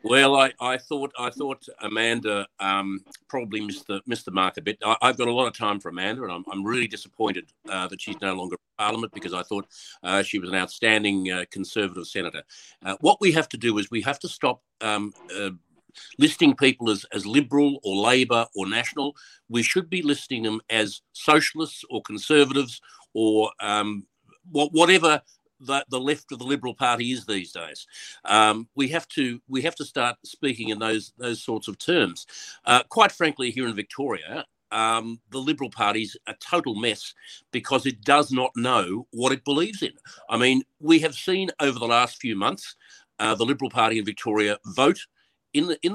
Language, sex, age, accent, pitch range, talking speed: English, male, 50-69, Australian, 110-145 Hz, 195 wpm